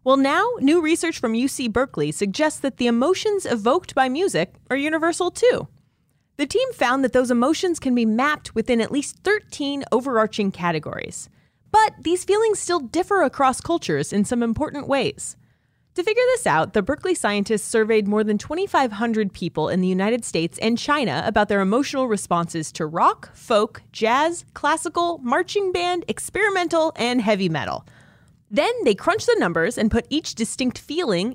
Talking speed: 165 wpm